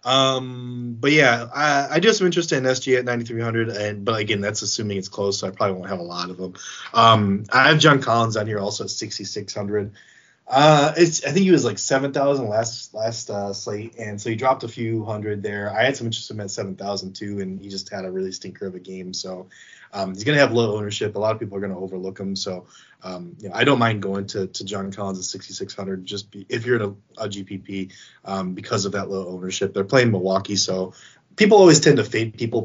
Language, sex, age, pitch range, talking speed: English, male, 20-39, 95-130 Hz, 240 wpm